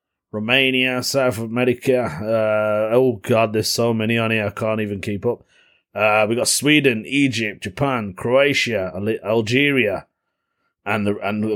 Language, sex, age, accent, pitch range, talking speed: English, male, 30-49, British, 100-135 Hz, 140 wpm